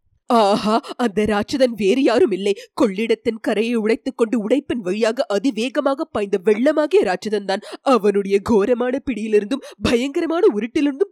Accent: native